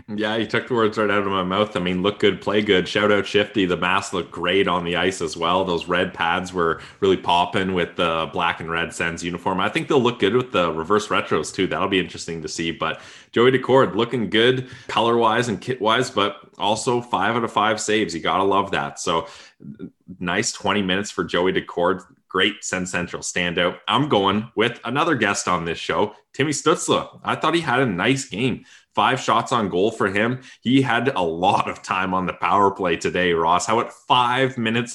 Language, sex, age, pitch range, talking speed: English, male, 20-39, 90-115 Hz, 215 wpm